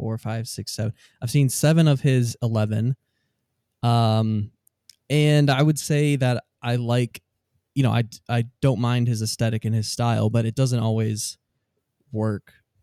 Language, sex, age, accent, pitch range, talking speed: English, male, 20-39, American, 110-130 Hz, 160 wpm